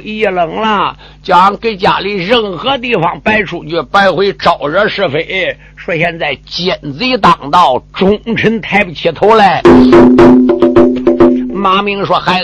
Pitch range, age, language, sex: 160-220 Hz, 50-69, Chinese, male